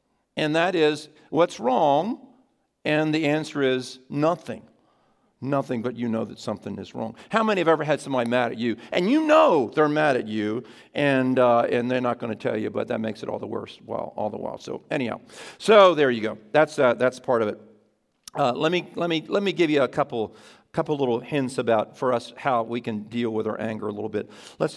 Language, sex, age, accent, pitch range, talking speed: Ukrainian, male, 50-69, American, 120-145 Hz, 230 wpm